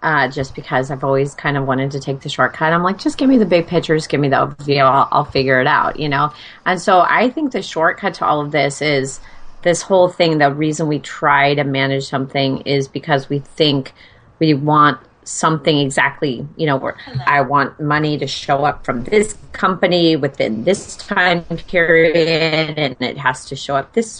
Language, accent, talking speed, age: English, American, 205 wpm, 30-49